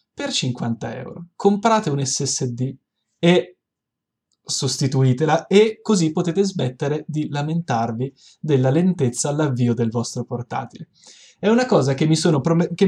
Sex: male